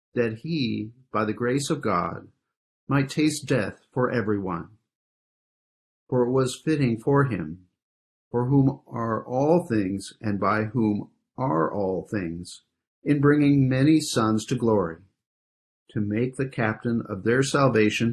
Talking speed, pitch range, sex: 140 wpm, 105-135 Hz, male